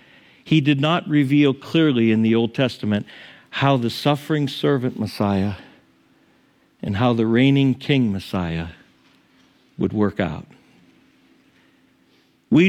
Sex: male